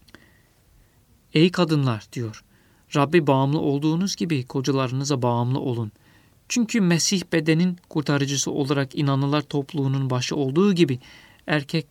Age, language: 50-69, Turkish